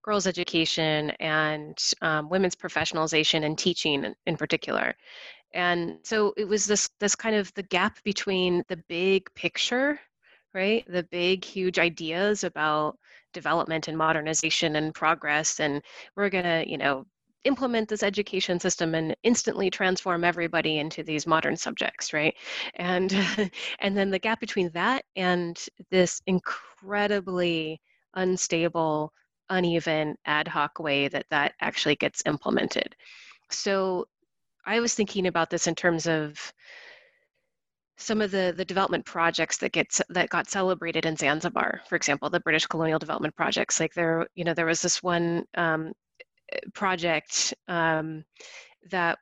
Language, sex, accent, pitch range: English, female, American, 160-195 Hz